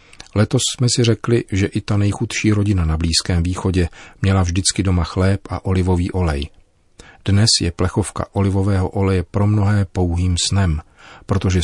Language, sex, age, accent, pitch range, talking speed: Czech, male, 40-59, native, 85-100 Hz, 150 wpm